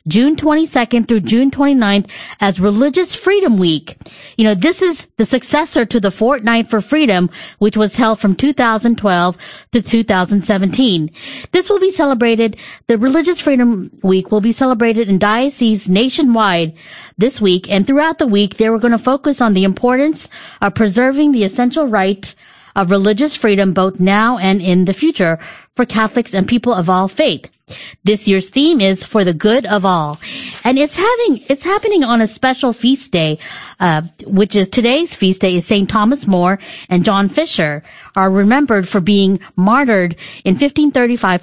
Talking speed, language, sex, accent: 165 wpm, English, female, American